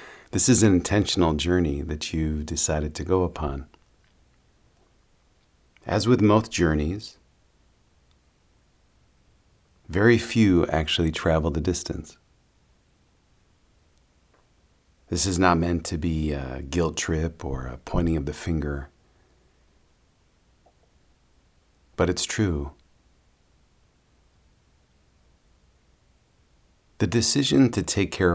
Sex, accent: male, American